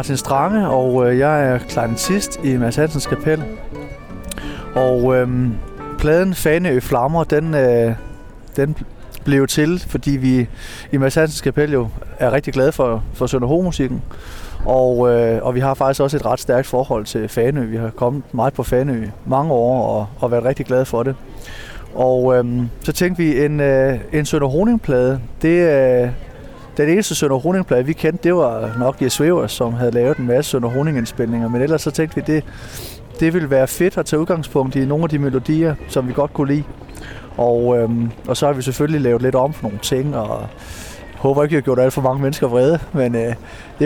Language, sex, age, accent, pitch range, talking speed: Danish, male, 30-49, native, 120-150 Hz, 190 wpm